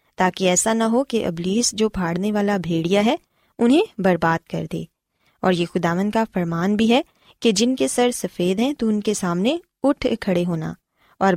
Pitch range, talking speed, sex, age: 180-240 Hz, 190 wpm, female, 20-39